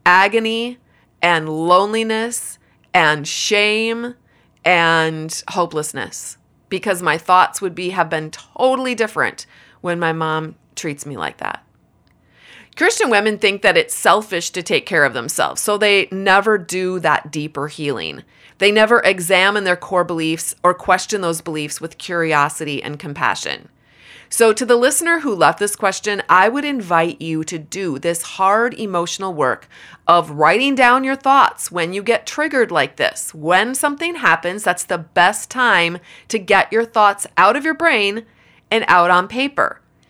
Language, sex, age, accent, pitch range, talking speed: English, female, 30-49, American, 170-250 Hz, 155 wpm